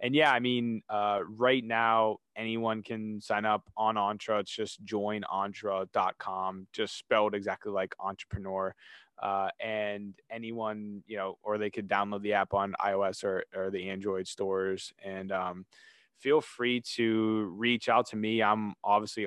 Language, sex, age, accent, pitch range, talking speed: English, male, 20-39, American, 95-110 Hz, 155 wpm